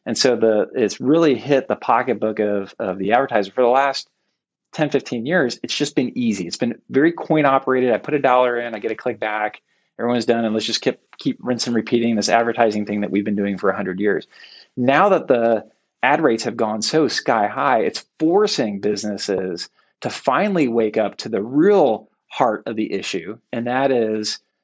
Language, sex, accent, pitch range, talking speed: English, male, American, 105-130 Hz, 200 wpm